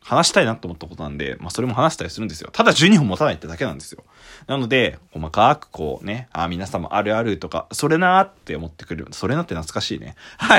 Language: Japanese